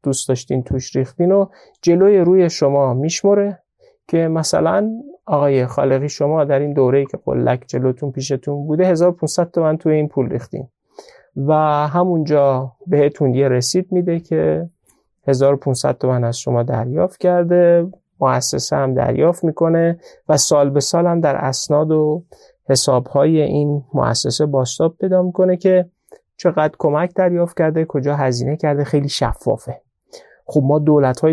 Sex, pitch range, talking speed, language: male, 135-170 Hz, 140 wpm, Persian